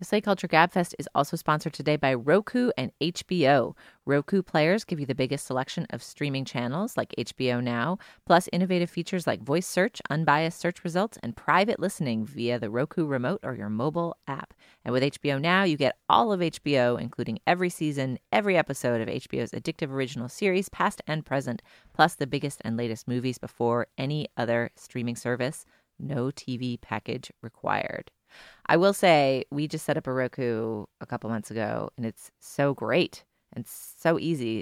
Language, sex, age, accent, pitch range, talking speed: English, female, 30-49, American, 120-165 Hz, 175 wpm